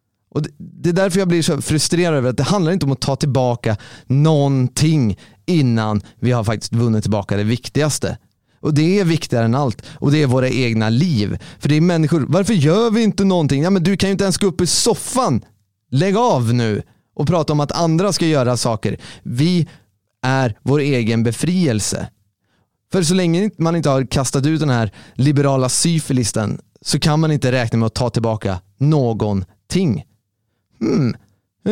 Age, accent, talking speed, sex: 30-49, native, 185 wpm, male